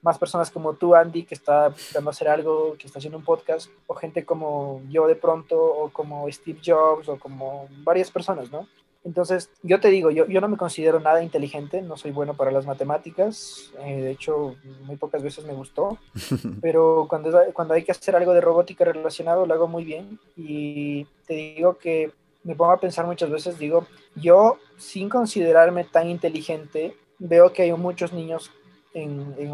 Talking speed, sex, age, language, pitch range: 190 wpm, male, 20-39, Spanish, 150-175 Hz